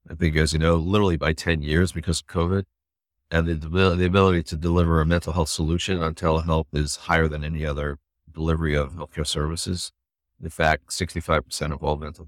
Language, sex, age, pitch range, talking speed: English, male, 50-69, 75-90 Hz, 190 wpm